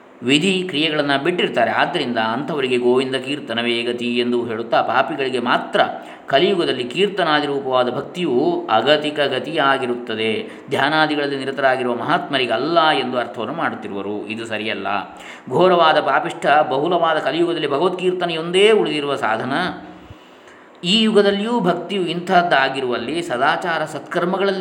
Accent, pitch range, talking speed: native, 130-185 Hz, 95 wpm